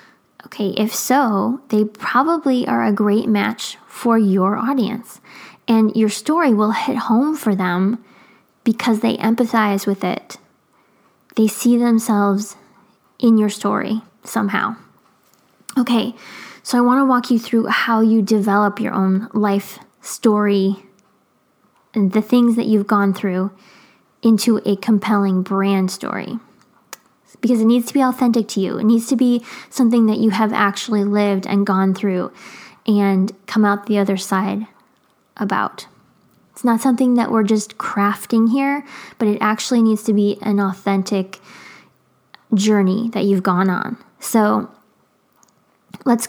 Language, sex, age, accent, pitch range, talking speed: English, female, 10-29, American, 200-235 Hz, 145 wpm